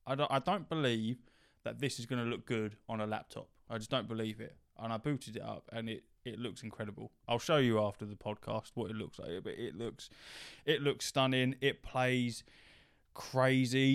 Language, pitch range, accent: English, 110-130 Hz, British